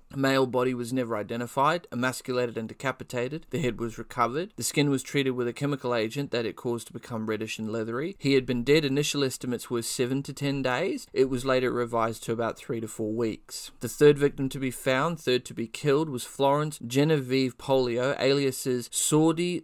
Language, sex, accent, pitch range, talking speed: English, male, Australian, 120-140 Hz, 200 wpm